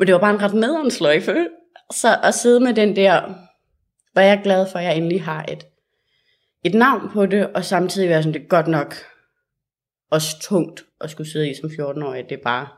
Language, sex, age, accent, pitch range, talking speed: Danish, female, 30-49, native, 155-200 Hz, 195 wpm